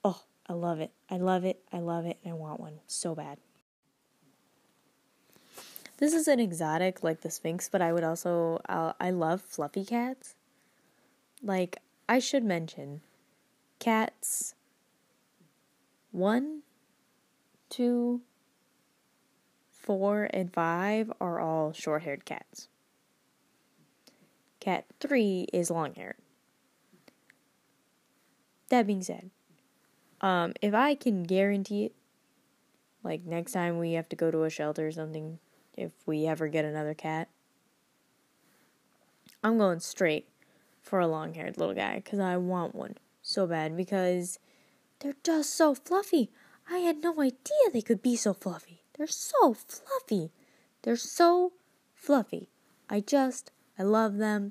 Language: English